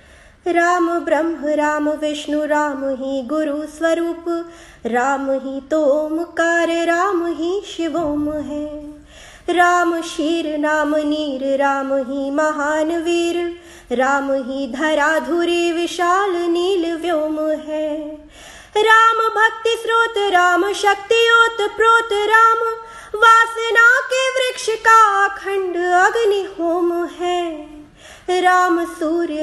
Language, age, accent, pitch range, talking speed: Hindi, 20-39, native, 310-375 Hz, 95 wpm